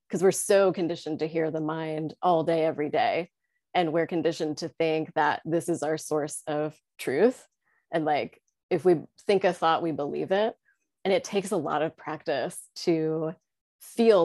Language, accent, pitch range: English, American, 155-175 Hz